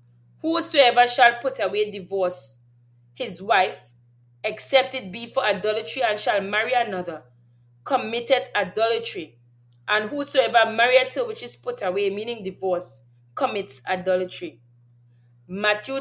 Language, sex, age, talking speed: English, female, 30-49, 115 wpm